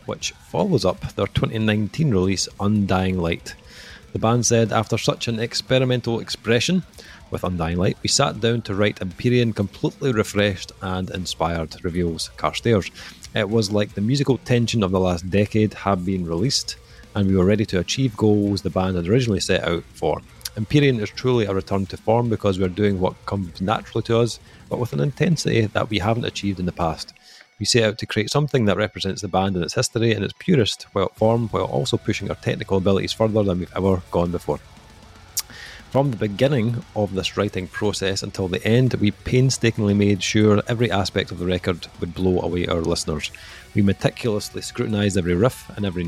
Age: 30-49